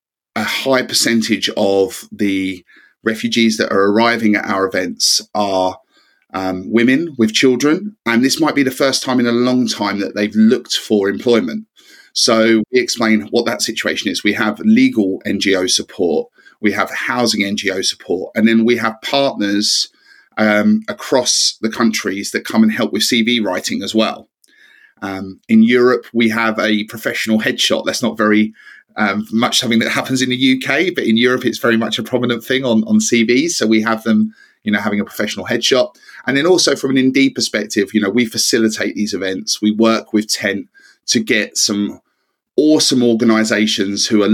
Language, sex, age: English, male, 30-49